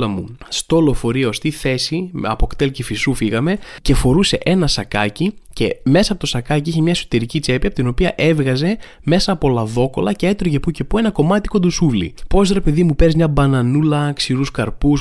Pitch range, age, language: 120-185 Hz, 20-39, Greek